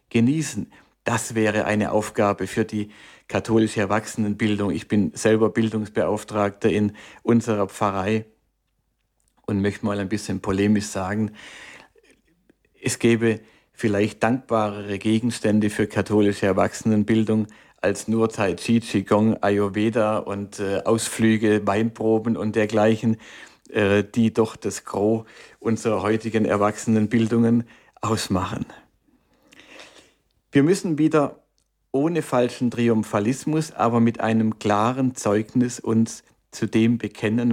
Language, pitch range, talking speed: German, 105-115 Hz, 105 wpm